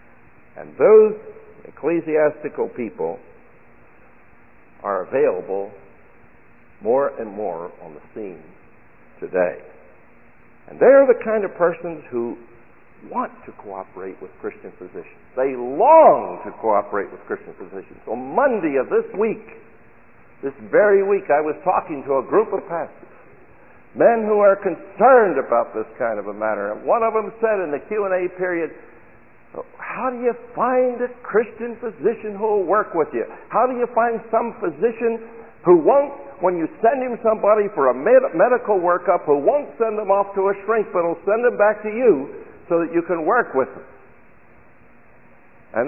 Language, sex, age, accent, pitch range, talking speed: English, male, 60-79, American, 170-245 Hz, 155 wpm